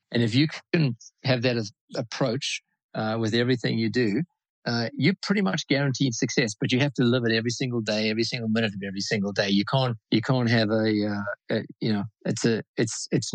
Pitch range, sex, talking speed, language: 105-125 Hz, male, 220 wpm, English